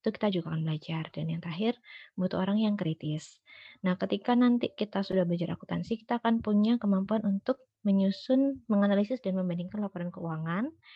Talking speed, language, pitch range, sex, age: 160 wpm, Indonesian, 185-230 Hz, female, 20-39